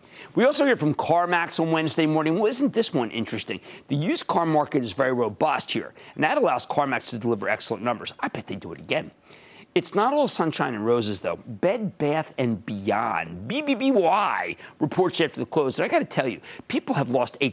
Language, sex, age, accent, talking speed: English, male, 50-69, American, 210 wpm